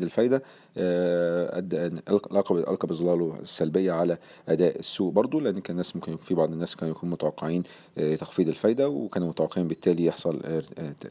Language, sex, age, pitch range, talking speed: Arabic, male, 40-59, 80-100 Hz, 130 wpm